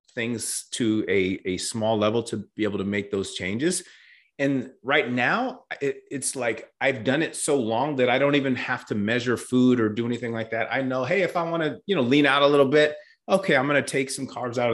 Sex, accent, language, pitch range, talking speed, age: male, American, English, 115-140 Hz, 235 wpm, 30-49